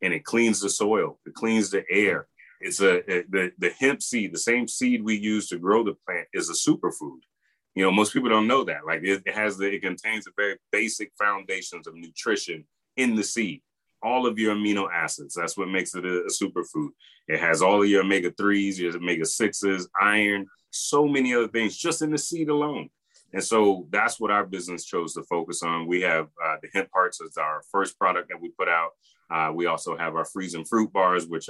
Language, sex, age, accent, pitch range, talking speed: English, male, 30-49, American, 90-110 Hz, 210 wpm